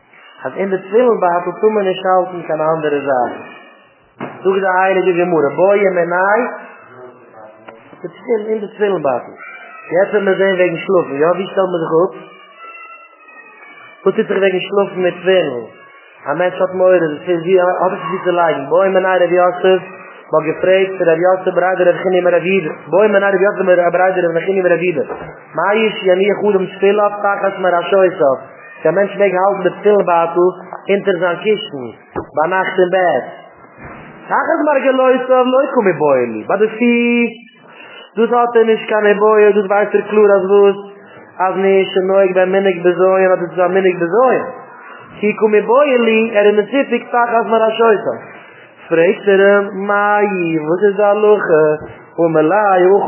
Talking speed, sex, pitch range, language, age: 100 wpm, male, 175-210 Hz, English, 30-49